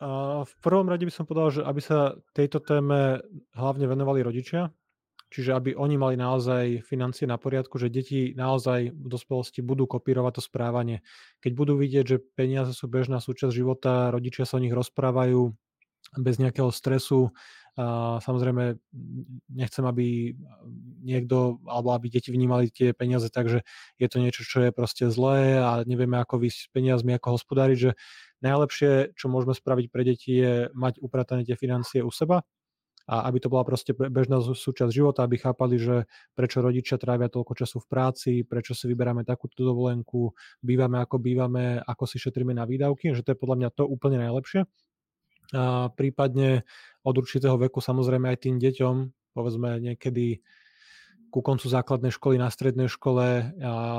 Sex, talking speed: male, 160 wpm